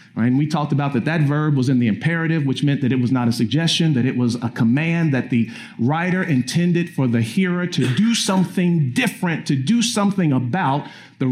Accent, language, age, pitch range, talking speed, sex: American, English, 50-69, 135-185 Hz, 210 wpm, male